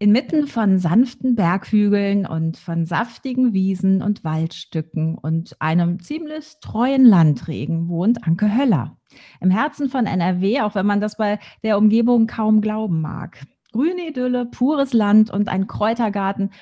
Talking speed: 140 wpm